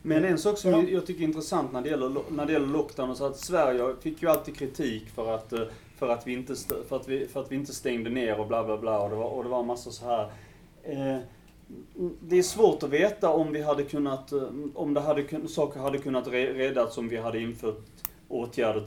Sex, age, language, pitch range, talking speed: male, 30-49, Swedish, 110-140 Hz, 225 wpm